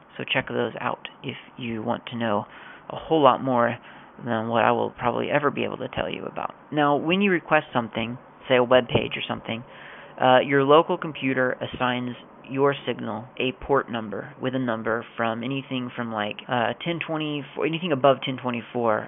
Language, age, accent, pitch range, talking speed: English, 30-49, American, 115-135 Hz, 195 wpm